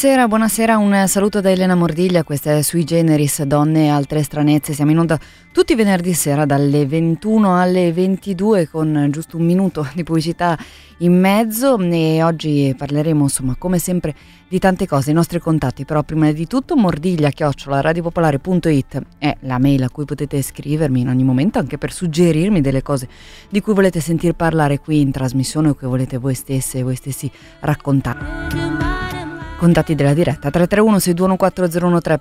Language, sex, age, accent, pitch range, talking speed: Italian, female, 20-39, native, 150-180 Hz, 165 wpm